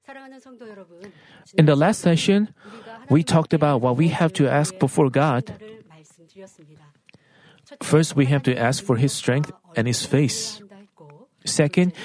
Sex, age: male, 40-59